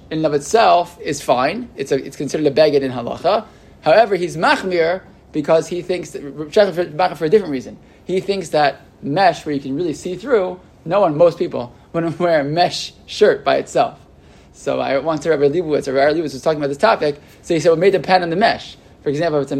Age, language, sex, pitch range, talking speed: 20-39, English, male, 145-190 Hz, 225 wpm